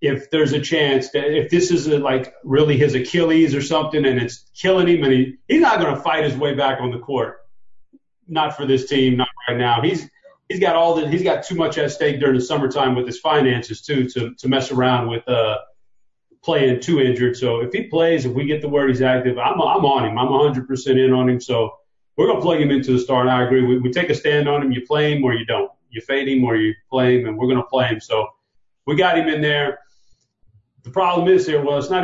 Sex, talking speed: male, 250 wpm